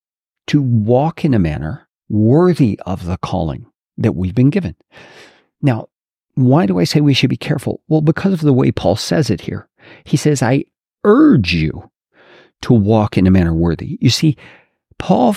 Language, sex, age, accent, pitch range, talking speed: English, male, 50-69, American, 105-150 Hz, 175 wpm